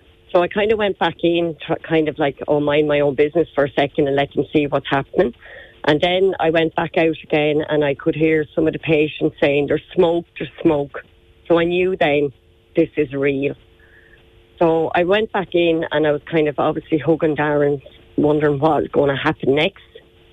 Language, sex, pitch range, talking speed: English, female, 145-175 Hz, 210 wpm